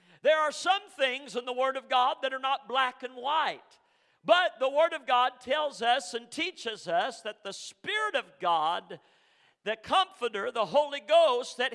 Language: English